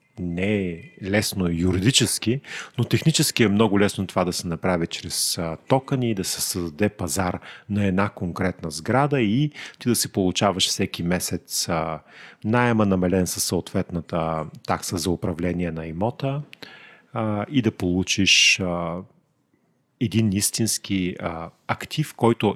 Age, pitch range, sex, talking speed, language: 40-59, 90-115 Hz, male, 135 wpm, English